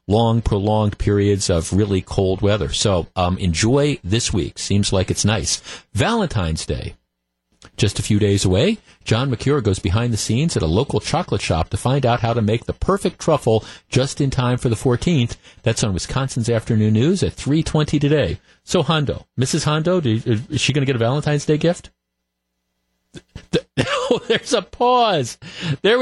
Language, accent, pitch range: English, American, 100-150 Hz